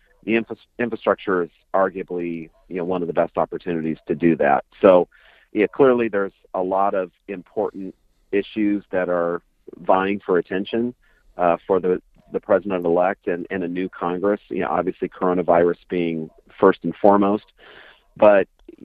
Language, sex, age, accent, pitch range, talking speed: English, male, 40-59, American, 85-105 Hz, 150 wpm